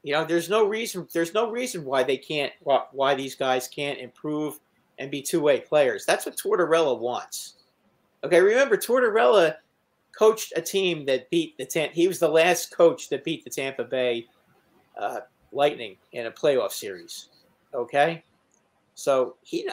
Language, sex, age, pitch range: English, male, 50-69, 130-175 Hz